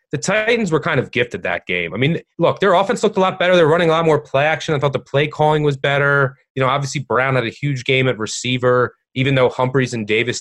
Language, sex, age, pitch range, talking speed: English, male, 30-49, 110-140 Hz, 270 wpm